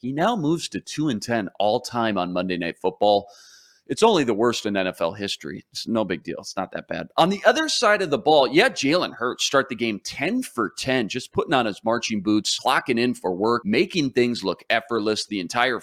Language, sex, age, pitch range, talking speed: English, male, 30-49, 105-130 Hz, 225 wpm